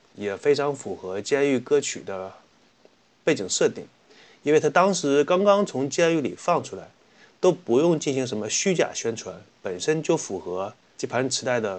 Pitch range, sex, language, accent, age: 115-160 Hz, male, Chinese, native, 30-49